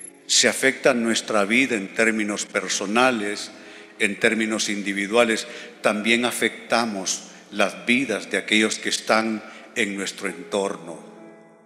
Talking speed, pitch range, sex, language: 110 wpm, 110-130 Hz, male, Spanish